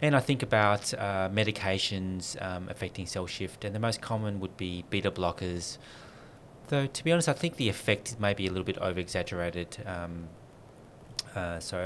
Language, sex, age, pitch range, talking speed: English, male, 20-39, 90-115 Hz, 170 wpm